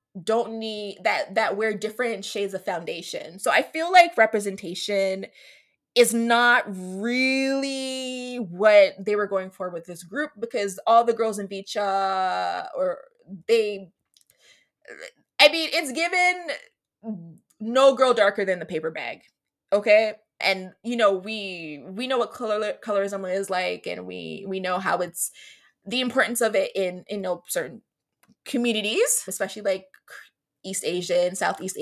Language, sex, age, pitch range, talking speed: English, female, 20-39, 190-260 Hz, 145 wpm